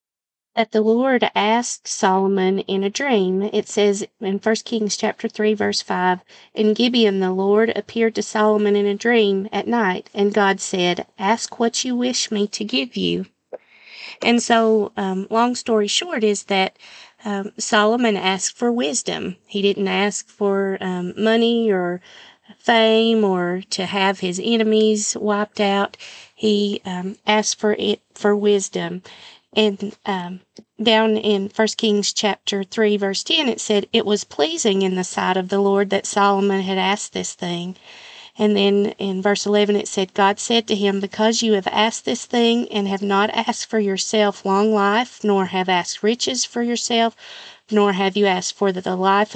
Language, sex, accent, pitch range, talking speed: English, female, American, 195-220 Hz, 170 wpm